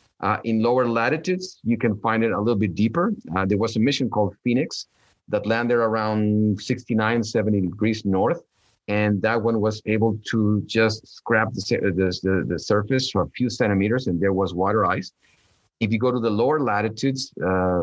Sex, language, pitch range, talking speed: male, English, 95-115 Hz, 185 wpm